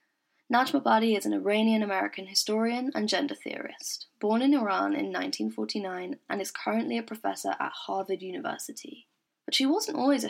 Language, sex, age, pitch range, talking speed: English, female, 10-29, 200-290 Hz, 150 wpm